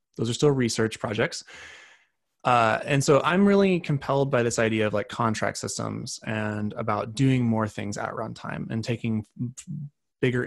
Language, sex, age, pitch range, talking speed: English, male, 20-39, 110-140 Hz, 160 wpm